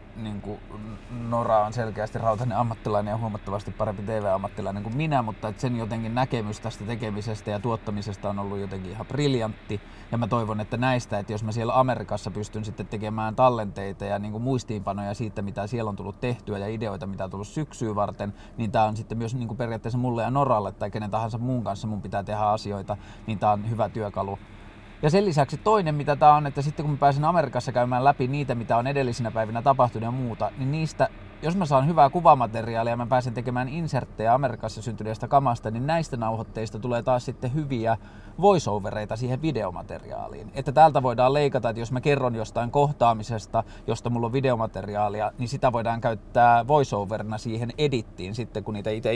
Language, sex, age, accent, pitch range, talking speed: Finnish, male, 20-39, native, 105-125 Hz, 185 wpm